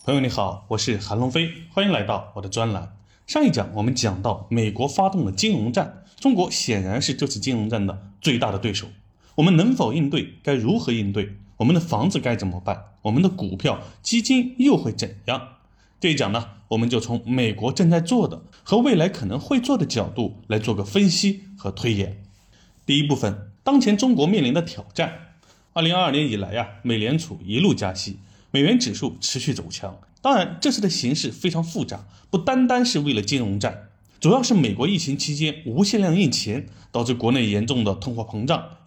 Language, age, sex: Chinese, 20-39, male